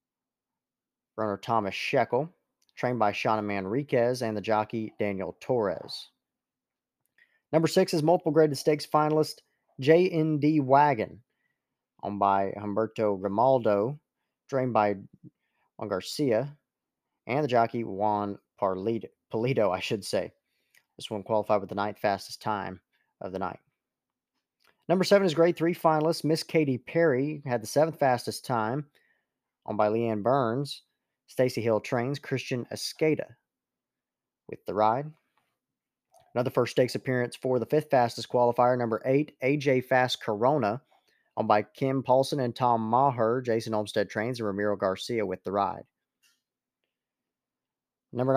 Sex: male